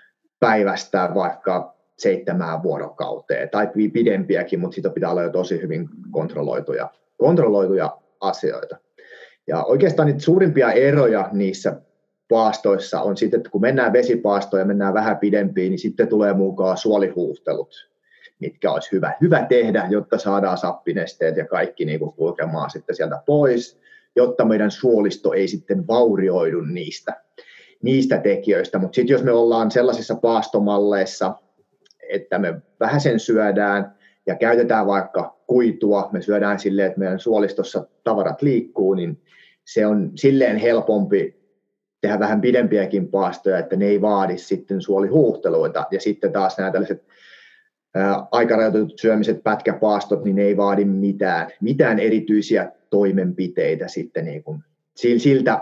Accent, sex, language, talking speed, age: native, male, Finnish, 130 wpm, 30-49